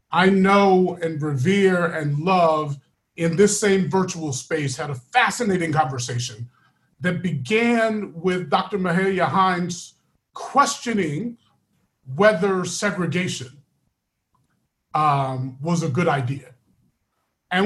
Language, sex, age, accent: English, male, 40-59, American